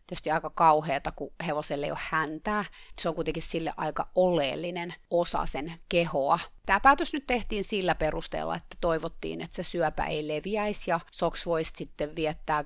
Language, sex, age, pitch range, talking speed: Finnish, female, 30-49, 155-175 Hz, 165 wpm